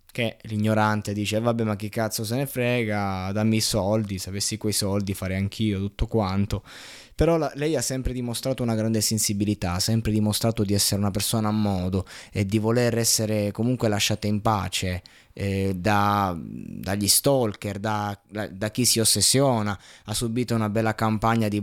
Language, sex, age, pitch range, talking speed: Italian, male, 20-39, 100-115 Hz, 175 wpm